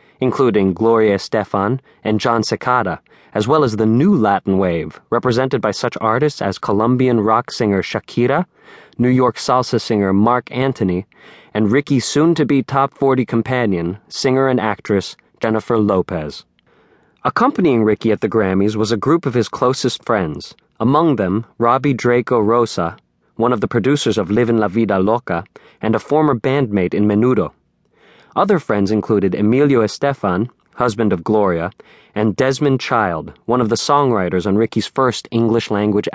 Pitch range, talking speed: 100-125 Hz, 150 wpm